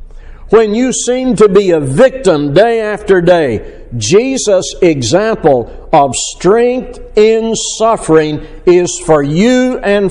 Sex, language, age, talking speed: male, English, 60-79, 120 wpm